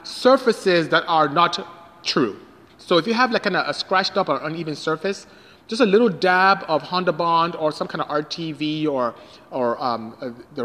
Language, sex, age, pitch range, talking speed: English, male, 30-49, 155-220 Hz, 185 wpm